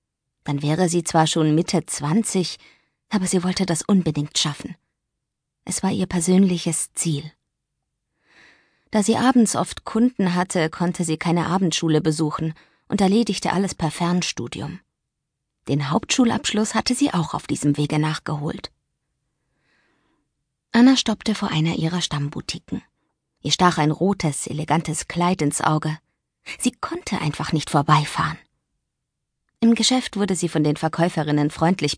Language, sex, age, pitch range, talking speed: German, female, 20-39, 155-200 Hz, 130 wpm